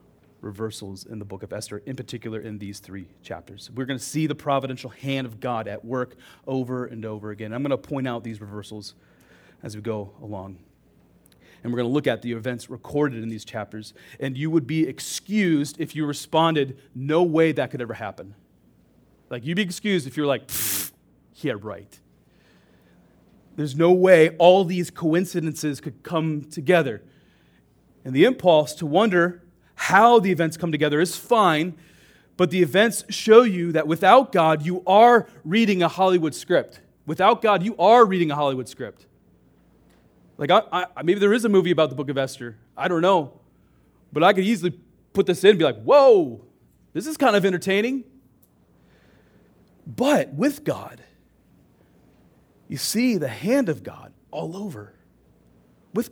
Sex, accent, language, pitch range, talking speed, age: male, American, English, 120-180 Hz, 170 wpm, 30-49